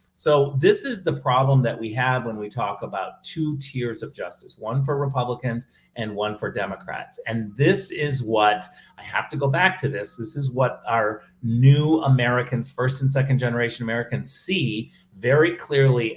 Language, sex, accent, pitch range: English, male, American, 115-150 Hz